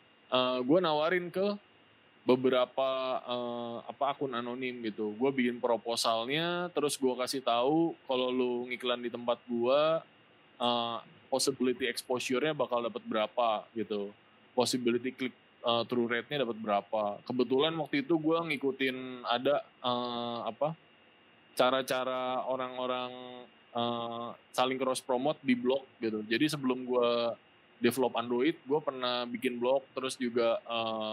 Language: Indonesian